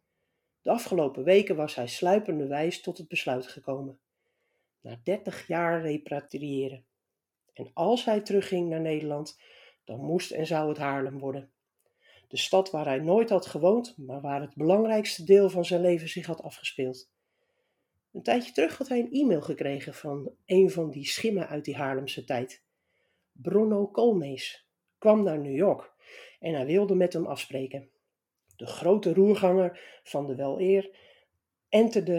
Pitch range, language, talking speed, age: 145-200 Hz, Dutch, 155 wpm, 60-79